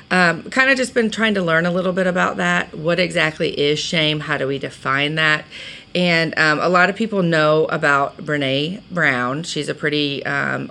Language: English